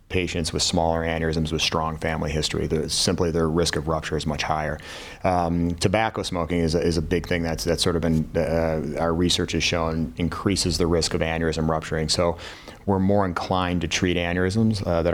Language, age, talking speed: English, 30-49, 200 wpm